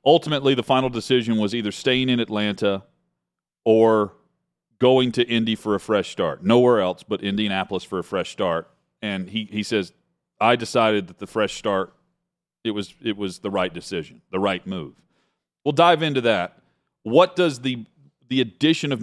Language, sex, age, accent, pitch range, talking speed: English, male, 40-59, American, 105-145 Hz, 175 wpm